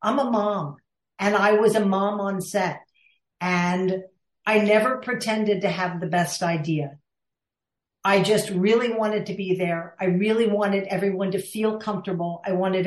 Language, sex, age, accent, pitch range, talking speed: English, female, 50-69, American, 180-210 Hz, 165 wpm